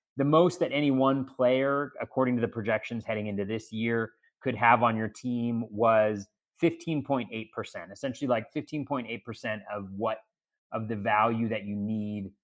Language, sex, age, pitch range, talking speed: English, male, 30-49, 110-145 Hz, 155 wpm